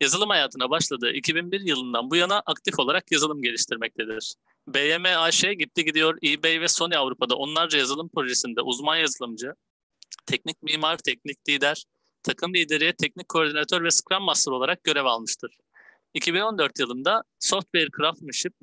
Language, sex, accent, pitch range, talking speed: Turkish, male, native, 140-180 Hz, 135 wpm